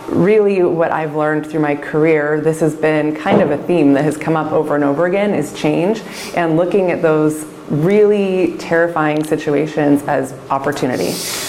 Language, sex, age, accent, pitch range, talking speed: English, female, 20-39, American, 145-165 Hz, 170 wpm